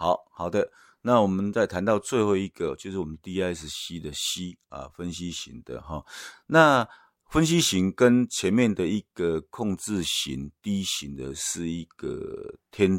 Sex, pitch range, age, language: male, 80-105 Hz, 50-69, Chinese